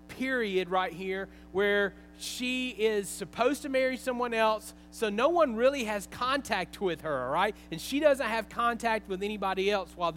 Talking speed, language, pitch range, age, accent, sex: 175 wpm, English, 160-225 Hz, 40-59, American, male